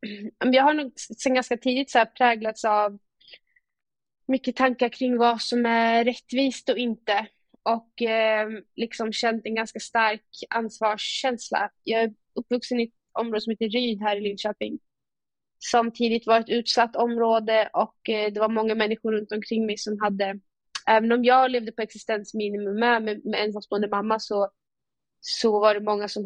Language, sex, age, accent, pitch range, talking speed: Swedish, female, 20-39, native, 215-240 Hz, 160 wpm